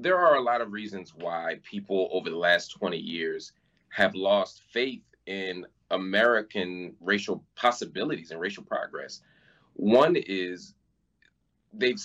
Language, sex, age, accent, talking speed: English, male, 30-49, American, 130 wpm